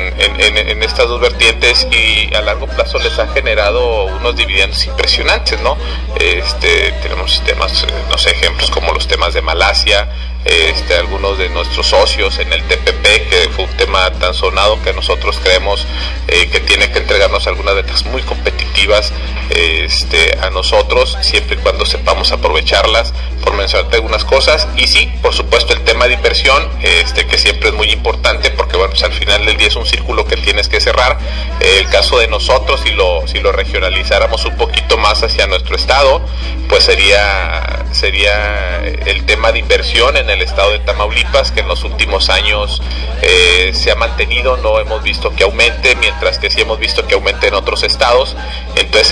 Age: 40-59